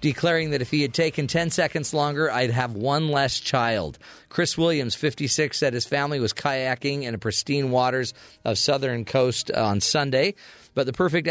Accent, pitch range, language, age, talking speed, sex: American, 120-160 Hz, English, 40-59, 175 wpm, male